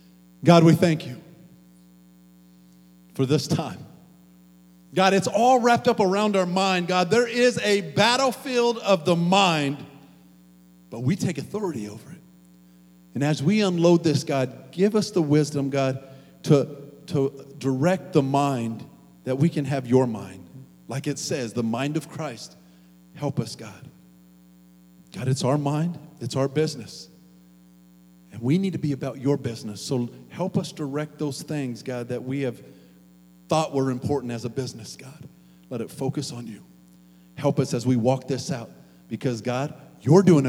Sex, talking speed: male, 160 wpm